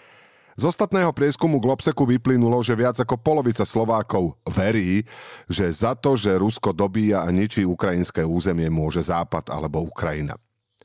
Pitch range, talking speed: 90-120 Hz, 140 wpm